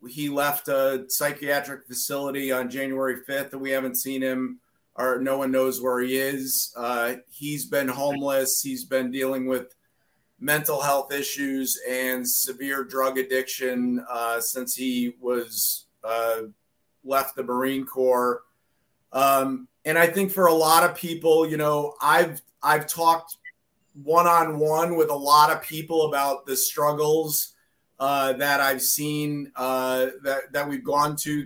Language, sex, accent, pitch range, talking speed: English, male, American, 130-150 Hz, 145 wpm